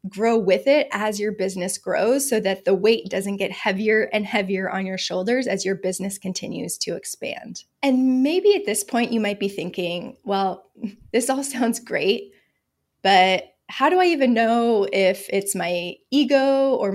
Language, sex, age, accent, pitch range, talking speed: English, female, 20-39, American, 195-260 Hz, 175 wpm